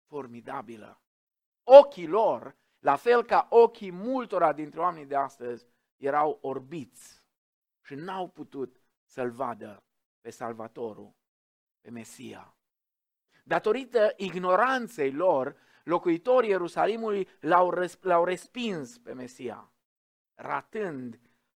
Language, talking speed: Romanian, 95 wpm